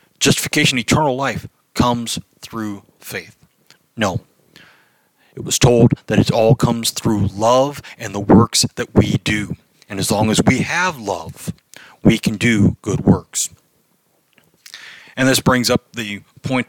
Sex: male